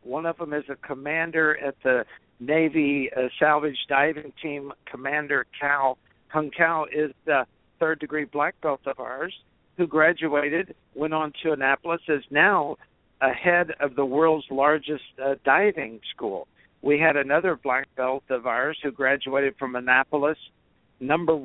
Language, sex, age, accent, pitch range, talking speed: English, male, 60-79, American, 135-160 Hz, 150 wpm